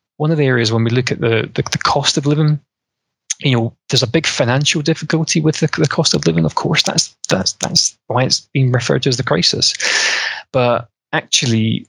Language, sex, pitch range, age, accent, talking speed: English, male, 115-150 Hz, 20-39, British, 210 wpm